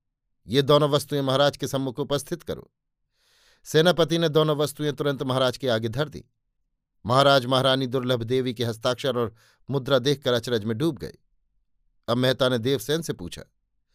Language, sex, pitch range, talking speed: Hindi, male, 120-150 Hz, 160 wpm